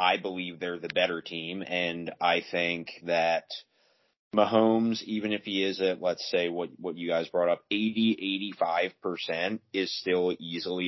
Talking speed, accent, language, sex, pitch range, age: 155 wpm, American, English, male, 85-100 Hz, 30-49